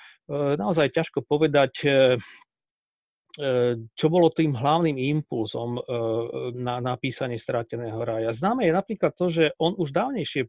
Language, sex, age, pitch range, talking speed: Slovak, male, 40-59, 125-155 Hz, 115 wpm